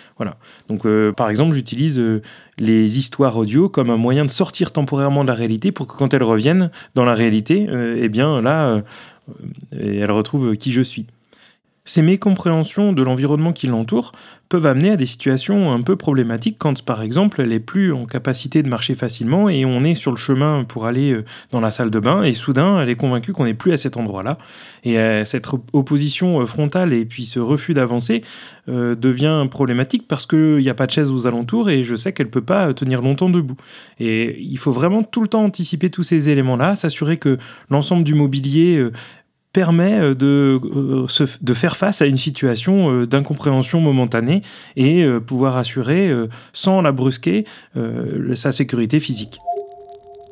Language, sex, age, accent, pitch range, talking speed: French, male, 30-49, French, 120-155 Hz, 185 wpm